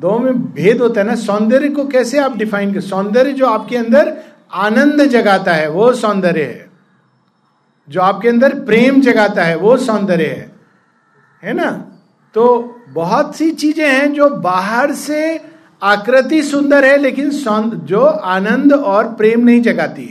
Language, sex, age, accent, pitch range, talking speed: Hindi, male, 50-69, native, 190-265 Hz, 155 wpm